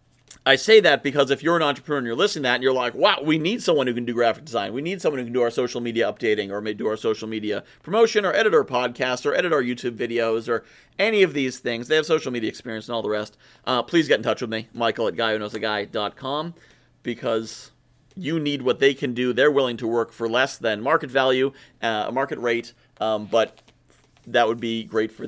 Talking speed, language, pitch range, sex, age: 240 wpm, English, 115-165 Hz, male, 40-59